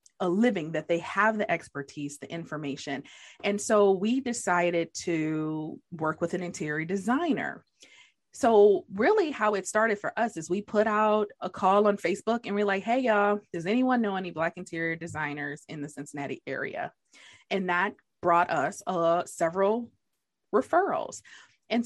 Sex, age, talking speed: female, 20-39, 160 wpm